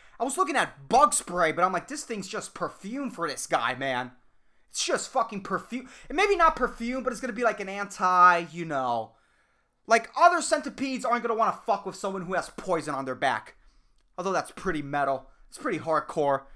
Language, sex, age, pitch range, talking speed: English, male, 20-39, 145-220 Hz, 205 wpm